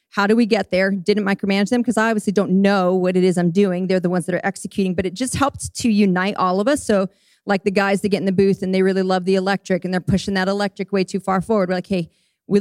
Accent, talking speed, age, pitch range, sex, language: American, 290 wpm, 30-49, 175-205 Hz, female, English